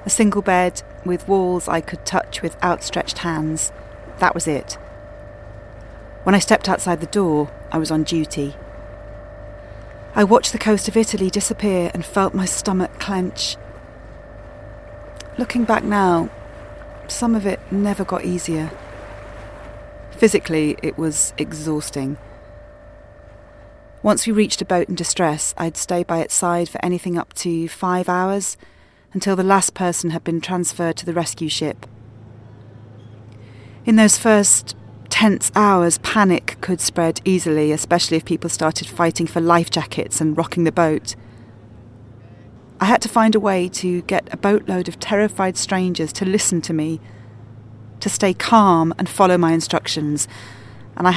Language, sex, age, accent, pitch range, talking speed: English, female, 30-49, British, 120-190 Hz, 145 wpm